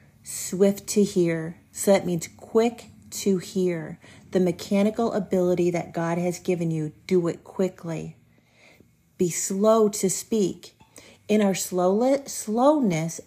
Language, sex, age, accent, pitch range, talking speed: English, female, 40-59, American, 175-215 Hz, 120 wpm